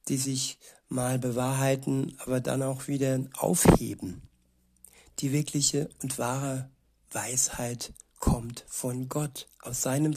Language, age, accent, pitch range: German, 60-79, German, 125-145 Hz